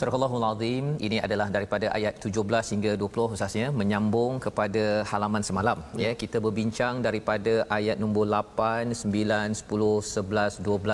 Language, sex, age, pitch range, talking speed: Malayalam, male, 40-59, 105-120 Hz, 145 wpm